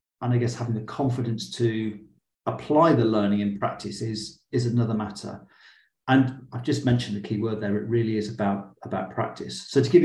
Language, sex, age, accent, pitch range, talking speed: English, male, 40-59, British, 110-130 Hz, 195 wpm